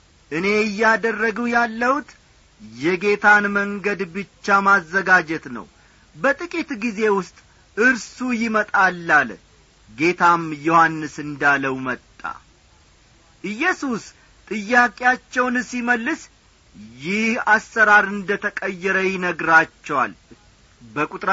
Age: 40-59